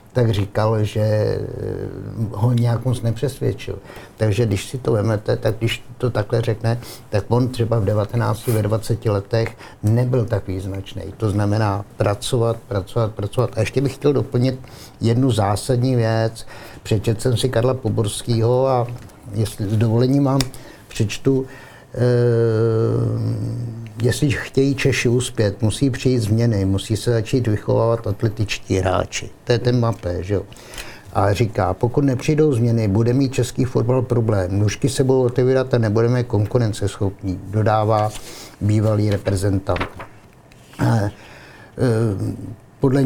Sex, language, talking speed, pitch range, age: male, Czech, 130 wpm, 105-125 Hz, 60-79